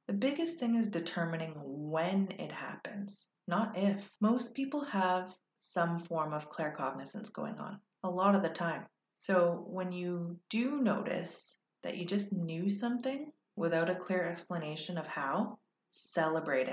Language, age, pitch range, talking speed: English, 30-49, 160-205 Hz, 145 wpm